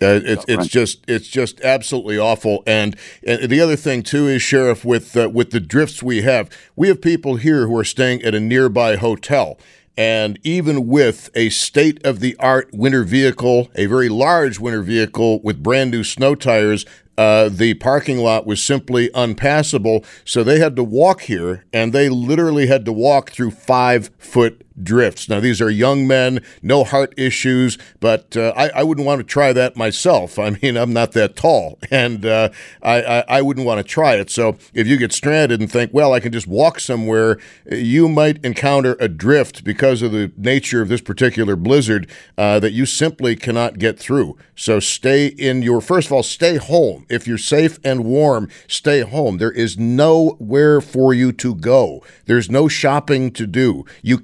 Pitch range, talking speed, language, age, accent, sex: 115-140 Hz, 190 wpm, English, 50-69, American, male